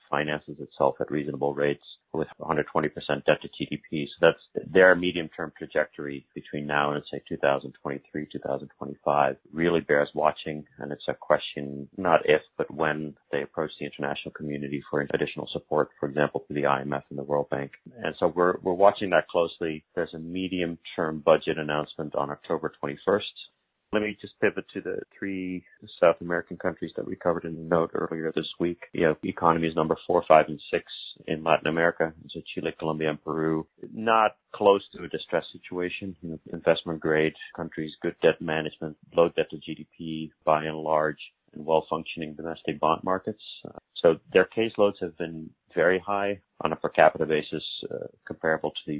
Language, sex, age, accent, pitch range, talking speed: English, male, 40-59, American, 75-85 Hz, 175 wpm